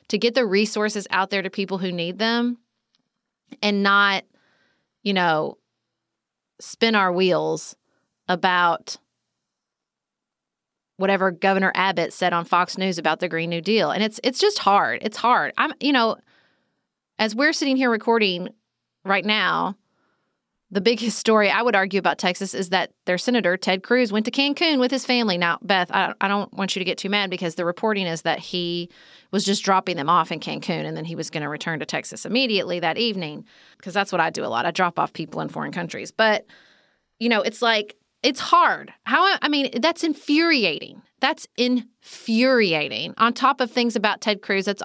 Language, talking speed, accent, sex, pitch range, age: English, 185 wpm, American, female, 195-255 Hz, 30-49